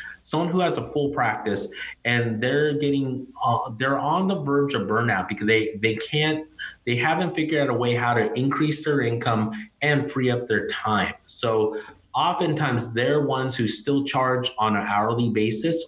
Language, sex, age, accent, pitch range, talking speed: English, male, 30-49, American, 105-135 Hz, 180 wpm